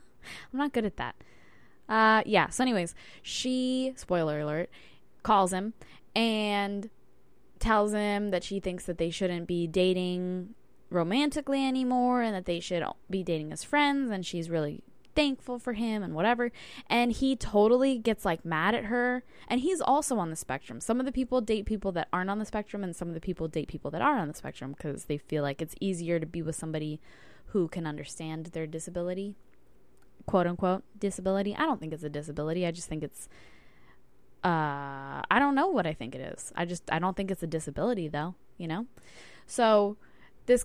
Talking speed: 190 wpm